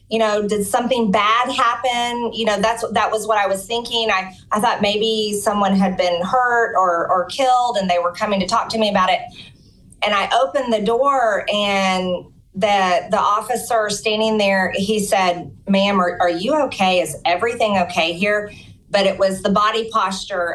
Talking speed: 185 wpm